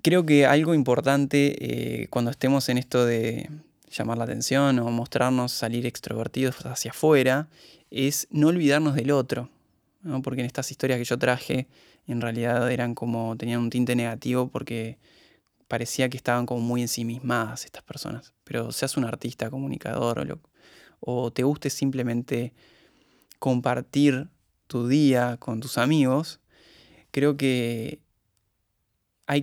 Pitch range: 120-145 Hz